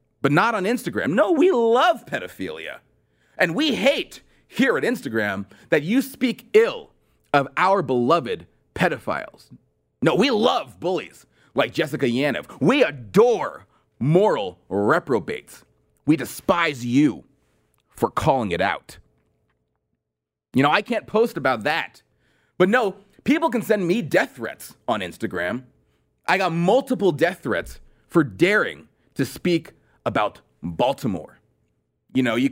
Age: 30-49